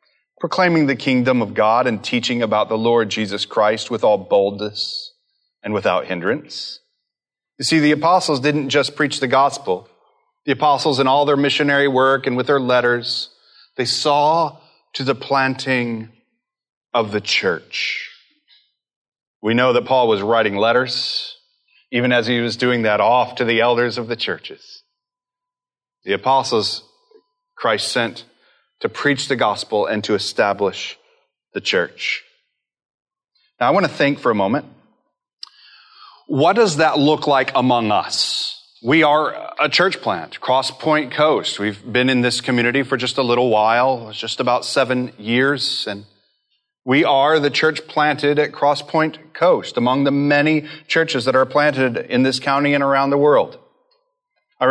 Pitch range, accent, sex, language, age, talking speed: 125-160 Hz, American, male, English, 30-49, 160 wpm